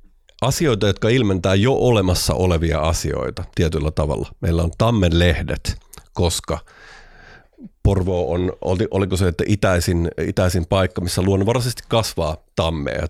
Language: Finnish